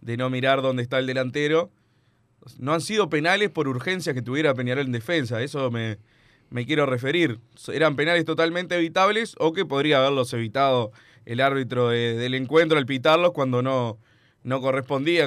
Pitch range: 120-145 Hz